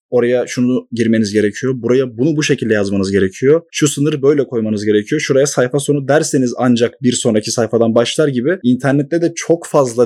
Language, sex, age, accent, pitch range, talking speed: Turkish, male, 30-49, native, 120-150 Hz, 175 wpm